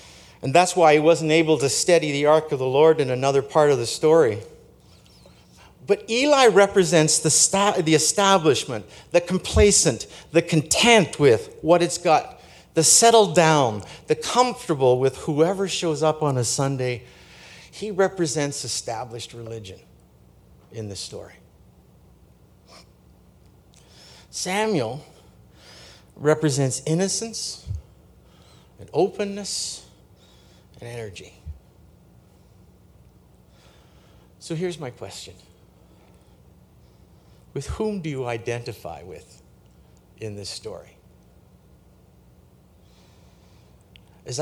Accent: American